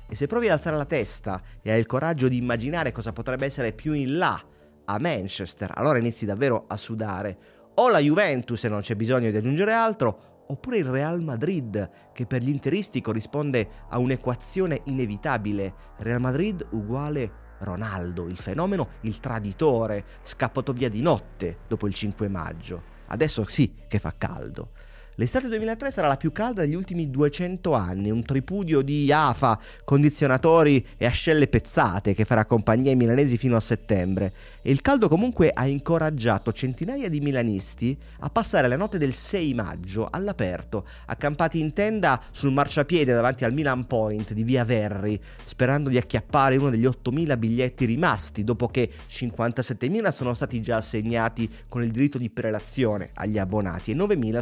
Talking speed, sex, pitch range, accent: 165 wpm, male, 110-145 Hz, native